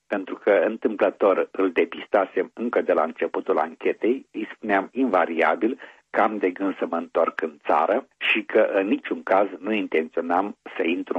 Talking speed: 165 wpm